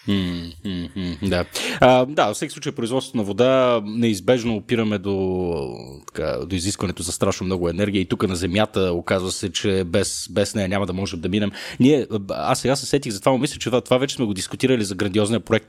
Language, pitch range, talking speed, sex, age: Bulgarian, 95-125 Hz, 175 wpm, male, 30-49